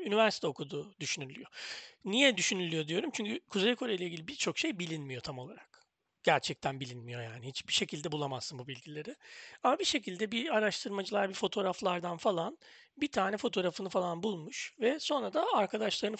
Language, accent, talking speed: Turkish, native, 150 wpm